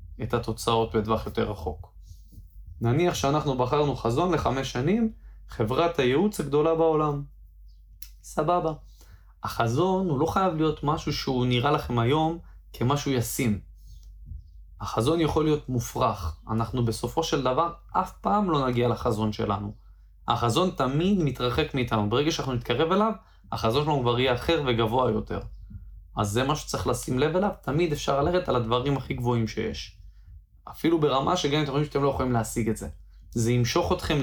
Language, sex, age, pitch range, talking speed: Hebrew, male, 20-39, 110-150 Hz, 155 wpm